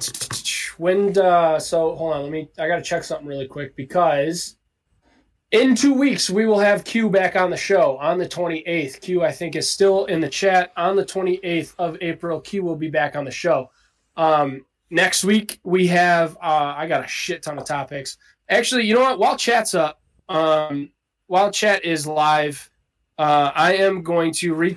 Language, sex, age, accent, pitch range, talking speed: English, male, 20-39, American, 150-185 Hz, 195 wpm